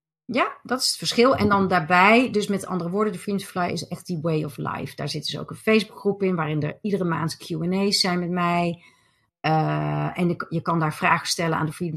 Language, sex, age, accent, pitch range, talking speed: Dutch, female, 30-49, Dutch, 165-210 Hz, 240 wpm